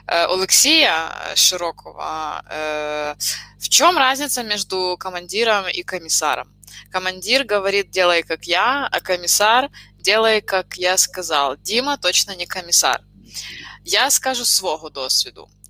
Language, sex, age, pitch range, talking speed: Ukrainian, female, 20-39, 170-205 Hz, 105 wpm